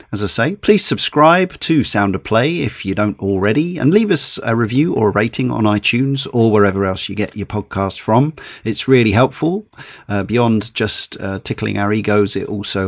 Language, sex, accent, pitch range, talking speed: English, male, British, 105-135 Hz, 195 wpm